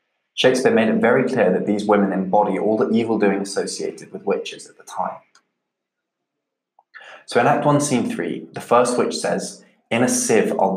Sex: male